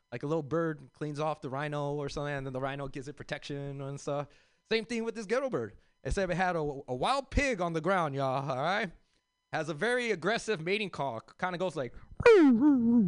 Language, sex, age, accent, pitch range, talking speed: English, male, 20-39, American, 140-195 Hz, 230 wpm